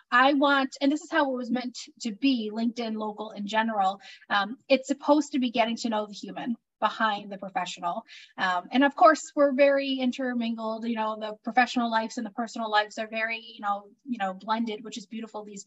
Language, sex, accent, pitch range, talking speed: English, female, American, 225-270 Hz, 210 wpm